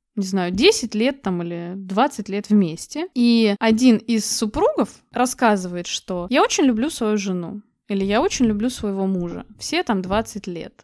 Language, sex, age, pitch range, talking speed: Russian, female, 20-39, 205-255 Hz, 165 wpm